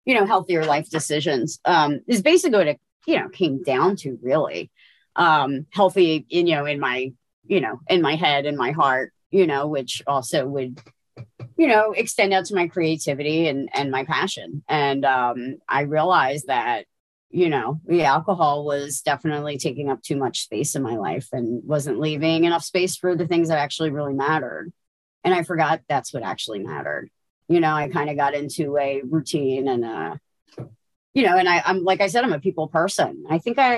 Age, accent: 30-49, American